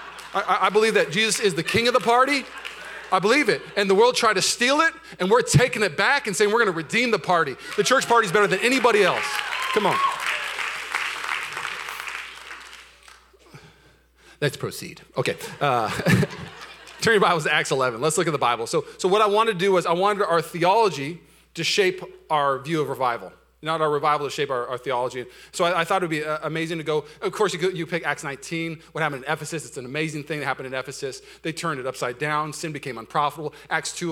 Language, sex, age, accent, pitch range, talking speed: English, male, 30-49, American, 140-190 Hz, 220 wpm